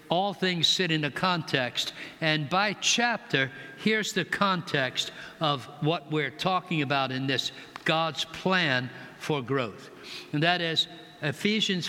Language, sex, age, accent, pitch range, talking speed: English, male, 60-79, American, 145-190 Hz, 135 wpm